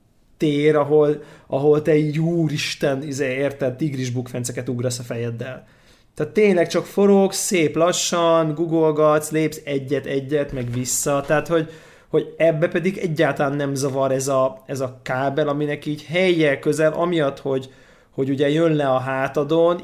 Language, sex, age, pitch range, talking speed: Hungarian, male, 30-49, 135-165 Hz, 145 wpm